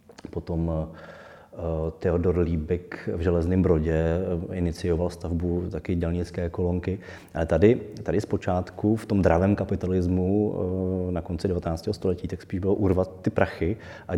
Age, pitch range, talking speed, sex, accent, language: 20-39, 85-95 Hz, 135 wpm, male, native, Czech